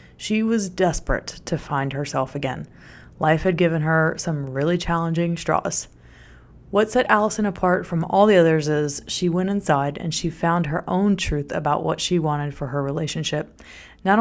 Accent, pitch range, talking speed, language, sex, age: American, 150-185 Hz, 175 wpm, English, female, 20-39